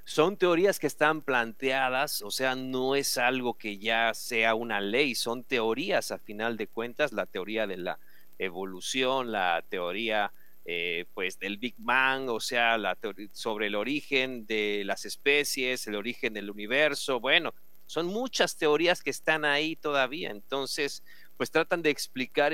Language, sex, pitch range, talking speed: Spanish, male, 115-150 Hz, 155 wpm